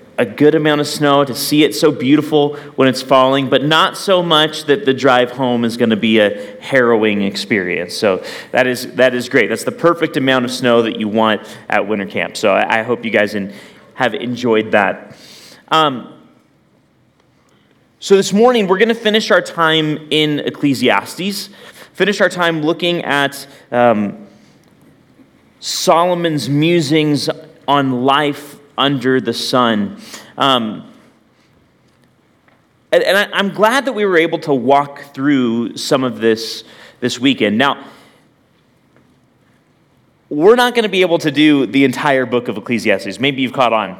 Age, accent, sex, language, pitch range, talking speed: 30-49, American, male, English, 125-165 Hz, 160 wpm